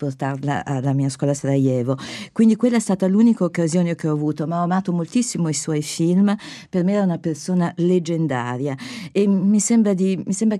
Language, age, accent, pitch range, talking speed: Italian, 50-69, native, 150-185 Hz, 195 wpm